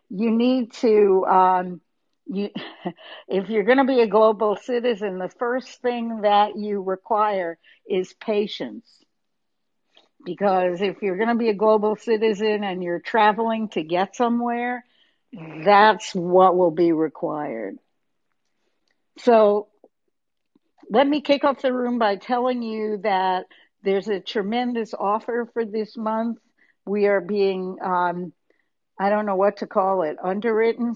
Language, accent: English, American